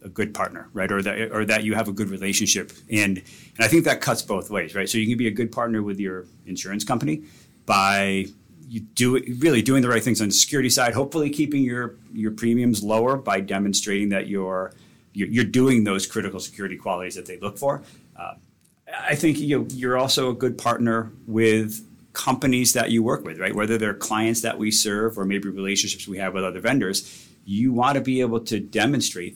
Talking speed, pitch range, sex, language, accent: 215 wpm, 100-125 Hz, male, English, American